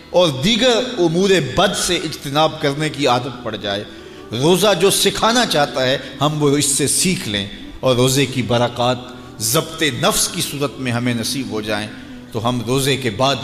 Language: English